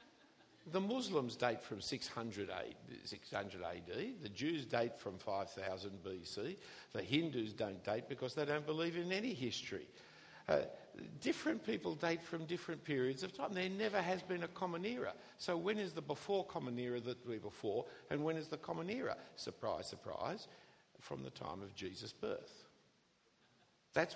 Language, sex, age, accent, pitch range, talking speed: English, male, 60-79, Australian, 110-185 Hz, 160 wpm